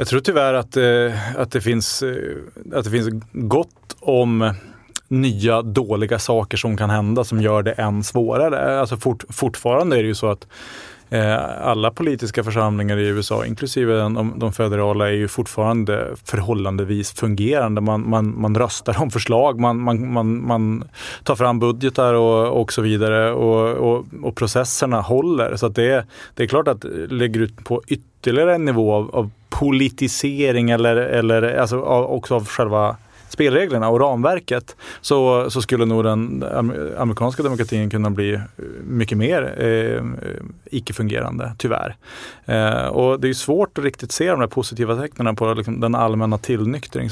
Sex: male